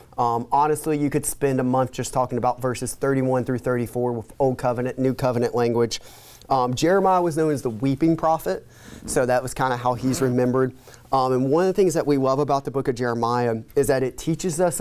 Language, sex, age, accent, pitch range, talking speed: English, male, 30-49, American, 125-150 Hz, 225 wpm